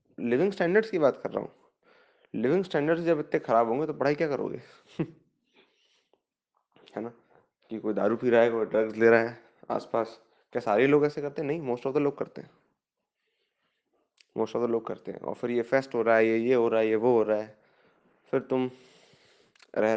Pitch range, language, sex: 115-145 Hz, Hindi, male